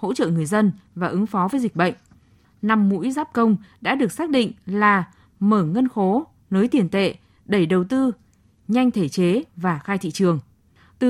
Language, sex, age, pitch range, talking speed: Vietnamese, female, 20-39, 185-245 Hz, 195 wpm